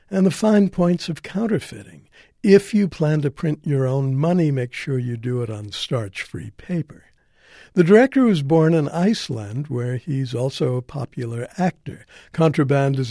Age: 60-79